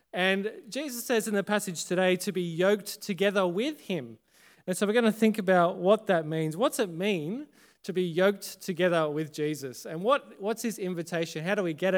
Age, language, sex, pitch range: 20-39, English, male, 165-205 Hz